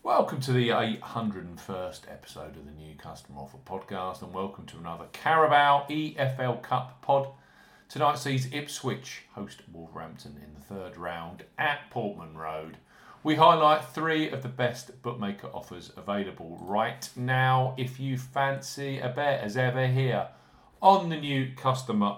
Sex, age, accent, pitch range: male, 50-69, British, 105-140 Hz